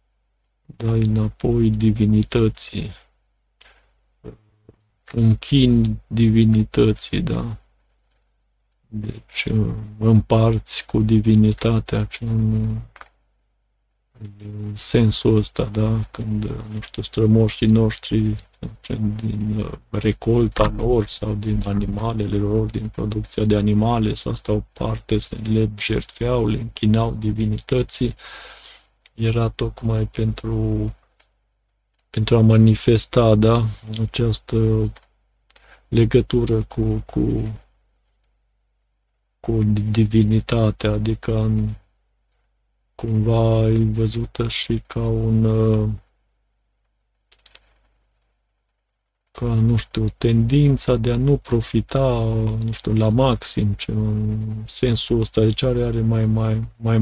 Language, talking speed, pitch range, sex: Romanian, 85 wpm, 105-115 Hz, male